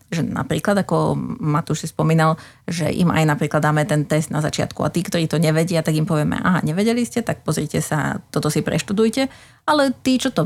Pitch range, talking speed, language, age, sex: 150-180 Hz, 205 wpm, Slovak, 30-49, female